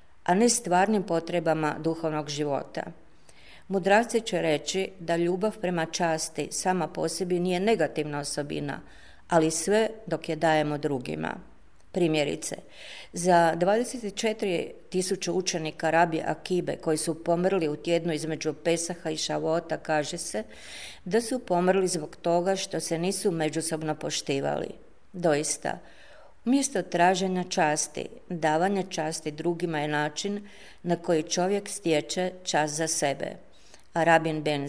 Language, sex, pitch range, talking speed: Croatian, female, 155-185 Hz, 120 wpm